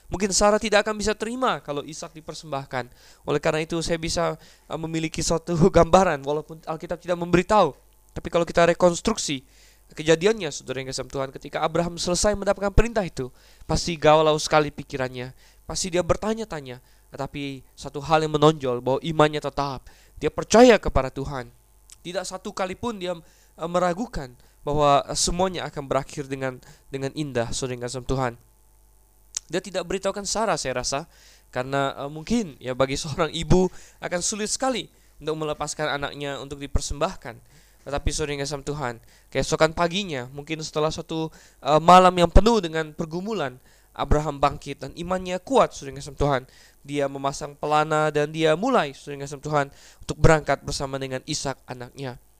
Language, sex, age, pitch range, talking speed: Indonesian, male, 20-39, 135-175 Hz, 150 wpm